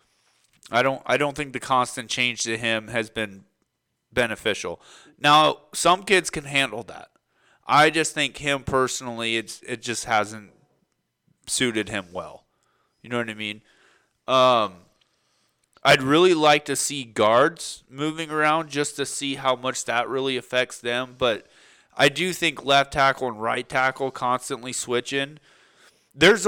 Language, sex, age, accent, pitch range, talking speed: English, male, 30-49, American, 115-140 Hz, 150 wpm